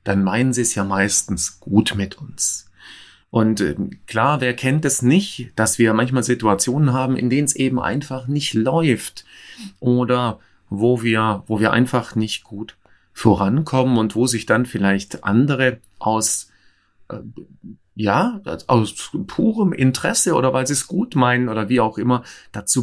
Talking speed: 160 wpm